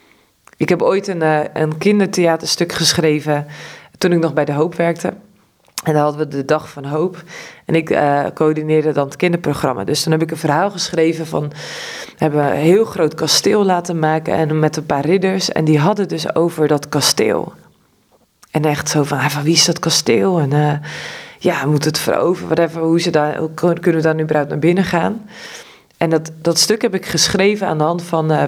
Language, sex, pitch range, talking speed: Dutch, female, 150-180 Hz, 205 wpm